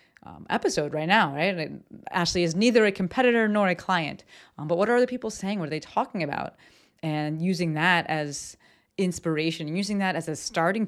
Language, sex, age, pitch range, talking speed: English, female, 30-49, 160-195 Hz, 195 wpm